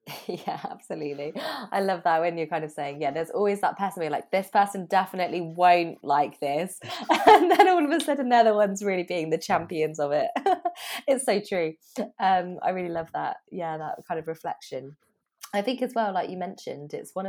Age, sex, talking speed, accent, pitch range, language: 20-39, female, 205 wpm, British, 155-210 Hz, English